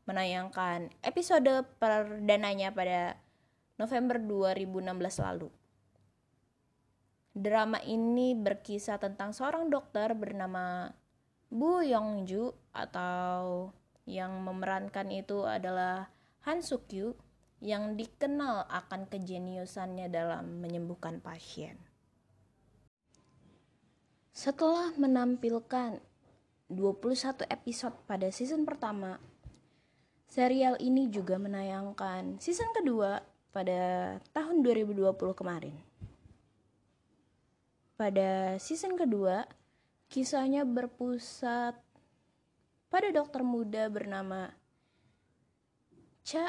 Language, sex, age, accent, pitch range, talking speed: Indonesian, female, 20-39, native, 190-255 Hz, 75 wpm